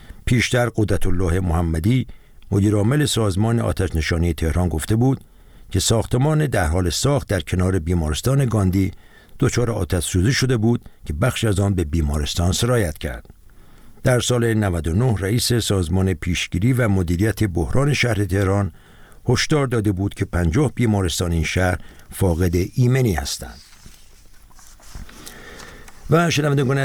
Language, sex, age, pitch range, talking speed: Persian, male, 60-79, 90-125 Hz, 125 wpm